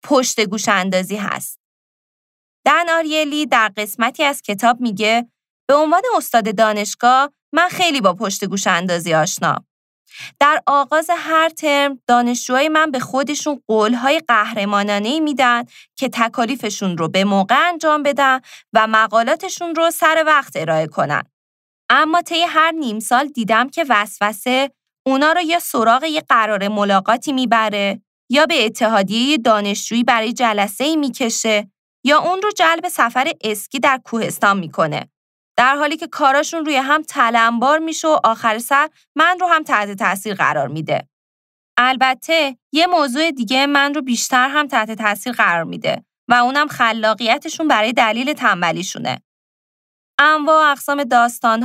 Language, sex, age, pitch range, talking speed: Persian, female, 20-39, 220-300 Hz, 135 wpm